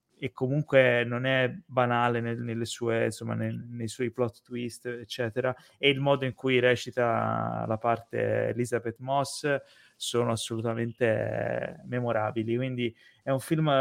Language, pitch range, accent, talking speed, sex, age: Italian, 120-150 Hz, native, 120 wpm, male, 20-39